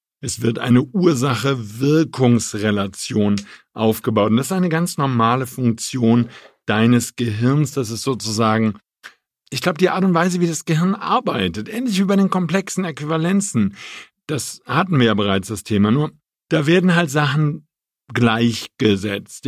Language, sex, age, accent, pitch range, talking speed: German, male, 50-69, German, 110-155 Hz, 140 wpm